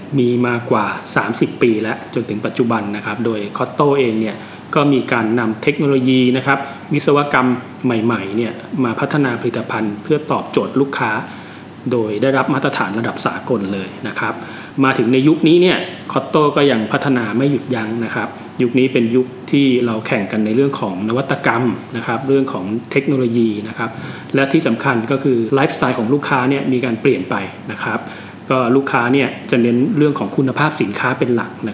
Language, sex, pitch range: Thai, male, 115-140 Hz